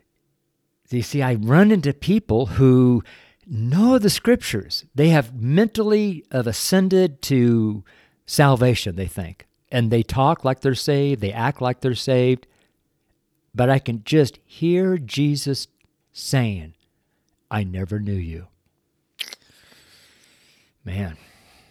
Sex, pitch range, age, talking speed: male, 105-145 Hz, 50-69, 115 wpm